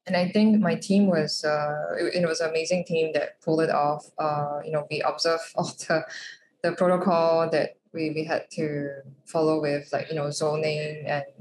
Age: 10-29